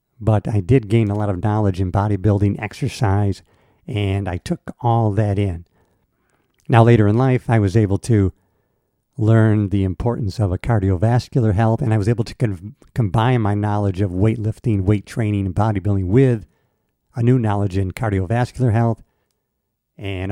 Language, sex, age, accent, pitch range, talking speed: English, male, 50-69, American, 100-125 Hz, 160 wpm